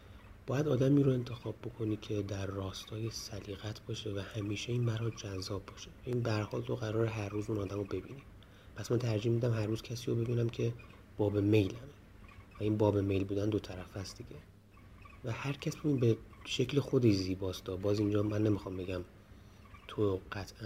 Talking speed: 190 wpm